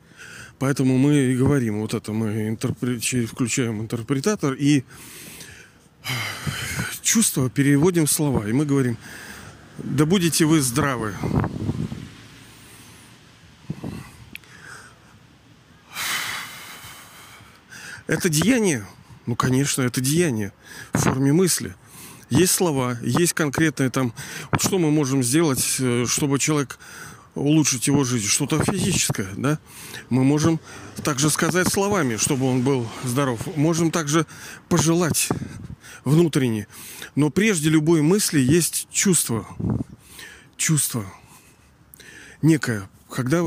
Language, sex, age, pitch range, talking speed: Russian, male, 40-59, 125-160 Hz, 95 wpm